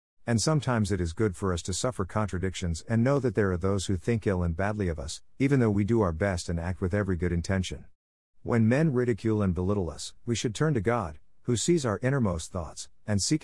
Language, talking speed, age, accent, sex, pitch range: English, 235 wpm, 50-69, American, male, 90-115 Hz